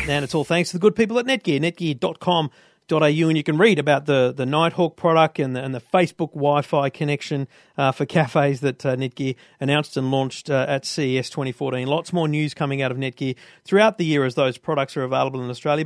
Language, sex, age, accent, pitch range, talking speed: English, male, 40-59, Australian, 140-170 Hz, 215 wpm